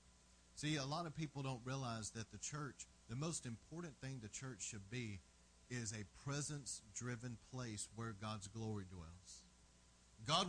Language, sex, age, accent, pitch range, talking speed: English, male, 40-59, American, 105-140 Hz, 155 wpm